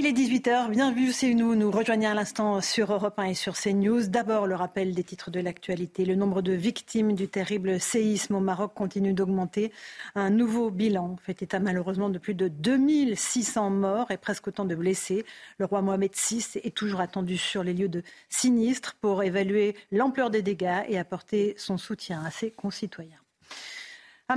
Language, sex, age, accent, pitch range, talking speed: French, female, 40-59, French, 190-235 Hz, 185 wpm